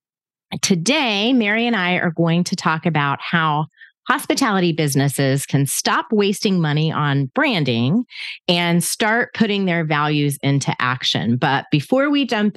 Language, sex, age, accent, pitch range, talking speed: English, female, 30-49, American, 145-215 Hz, 140 wpm